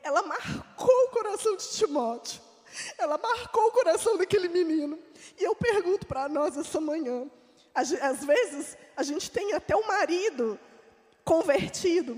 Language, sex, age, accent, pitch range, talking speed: Portuguese, female, 20-39, Brazilian, 270-350 Hz, 140 wpm